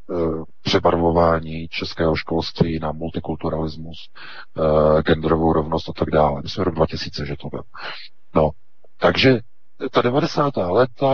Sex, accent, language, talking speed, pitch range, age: male, native, Czech, 130 wpm, 80-115 Hz, 40-59